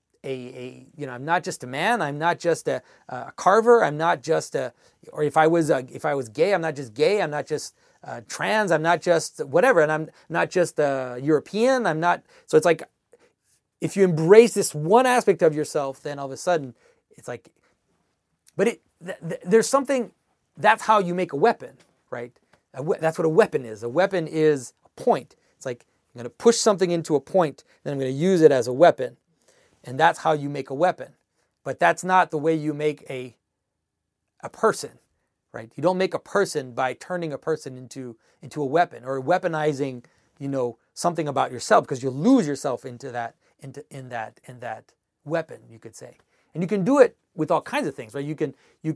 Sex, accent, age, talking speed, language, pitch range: male, American, 30-49, 215 wpm, English, 135-185 Hz